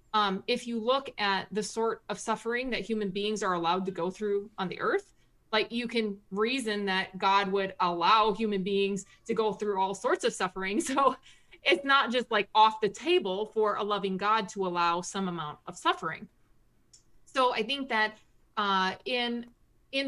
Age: 30-49